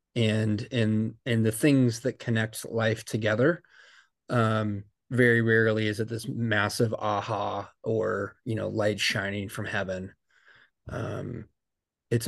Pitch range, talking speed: 110-125 Hz, 125 wpm